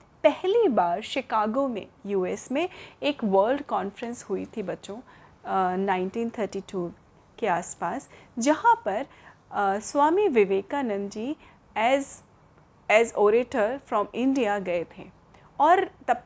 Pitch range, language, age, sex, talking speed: 205-275 Hz, Hindi, 30-49, female, 110 wpm